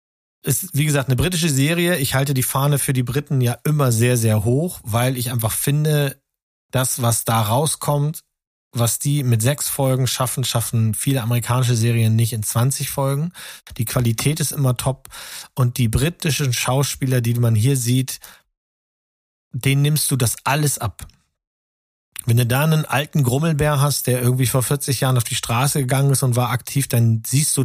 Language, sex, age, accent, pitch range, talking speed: German, male, 40-59, German, 115-140 Hz, 180 wpm